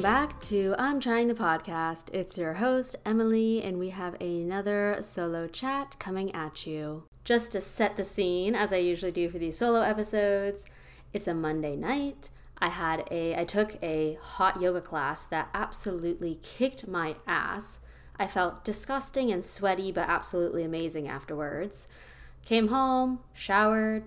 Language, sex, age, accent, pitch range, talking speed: English, female, 20-39, American, 165-205 Hz, 155 wpm